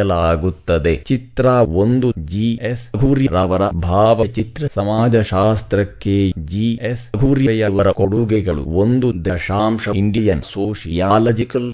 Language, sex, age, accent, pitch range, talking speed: English, male, 30-49, Indian, 95-115 Hz, 120 wpm